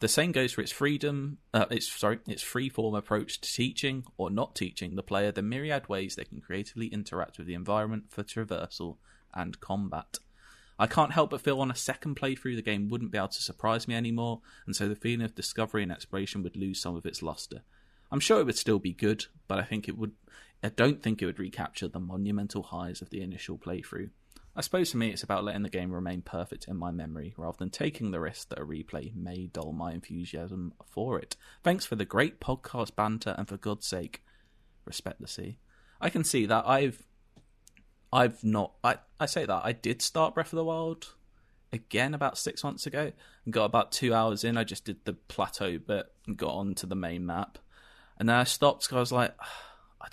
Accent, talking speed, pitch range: British, 215 wpm, 95-120 Hz